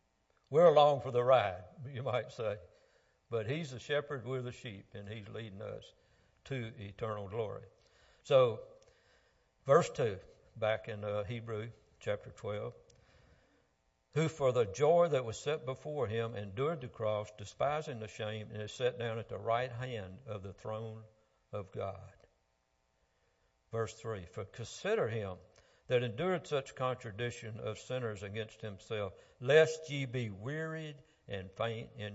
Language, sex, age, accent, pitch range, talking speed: English, male, 60-79, American, 100-130 Hz, 145 wpm